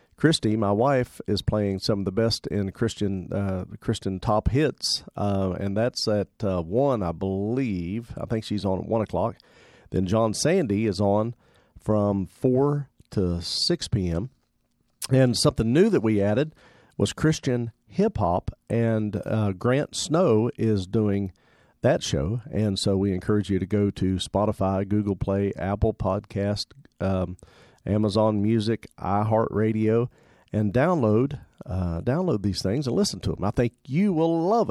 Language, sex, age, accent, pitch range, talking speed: English, male, 50-69, American, 100-130 Hz, 155 wpm